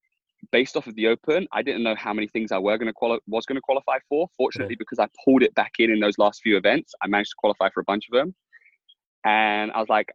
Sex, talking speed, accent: male, 270 wpm, British